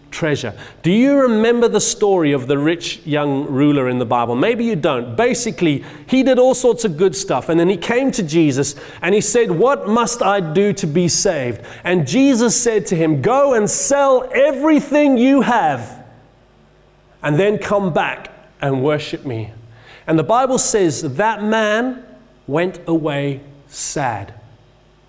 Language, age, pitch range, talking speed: English, 30-49, 150-235 Hz, 165 wpm